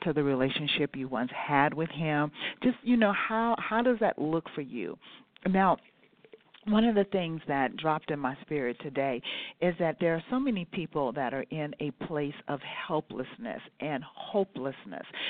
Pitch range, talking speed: 140-180 Hz, 175 wpm